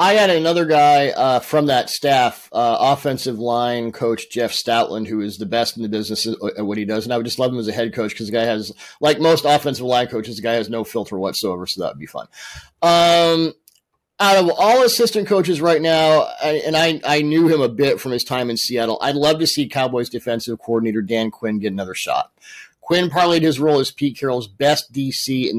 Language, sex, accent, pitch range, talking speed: English, male, American, 115-155 Hz, 230 wpm